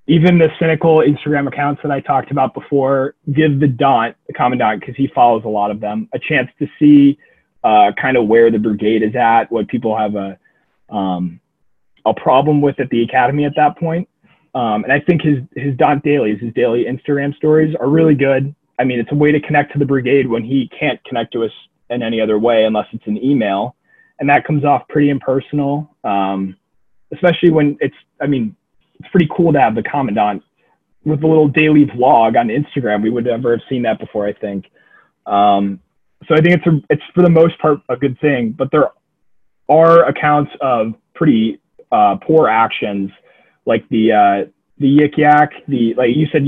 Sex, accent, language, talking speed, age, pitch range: male, American, English, 200 wpm, 20-39, 115-155 Hz